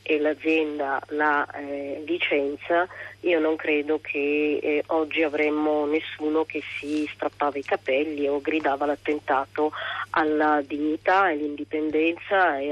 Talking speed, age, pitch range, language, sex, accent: 120 wpm, 30-49, 150-190 Hz, Italian, female, native